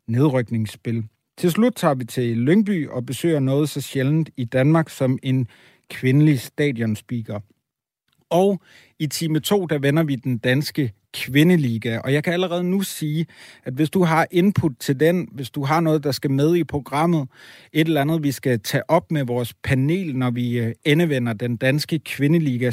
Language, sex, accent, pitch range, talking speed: Danish, male, native, 125-155 Hz, 175 wpm